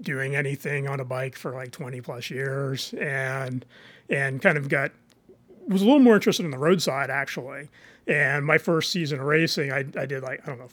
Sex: male